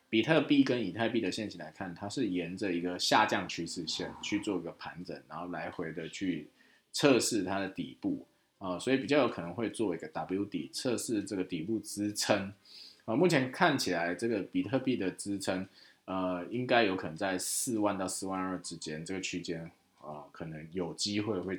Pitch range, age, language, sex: 90-110 Hz, 20-39, Chinese, male